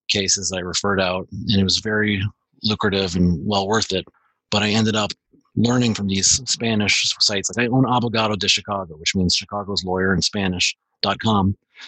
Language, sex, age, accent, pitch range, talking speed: English, male, 30-49, American, 95-115 Hz, 170 wpm